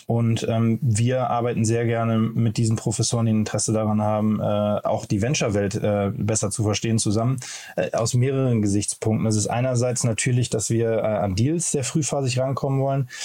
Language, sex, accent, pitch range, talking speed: German, male, German, 110-125 Hz, 175 wpm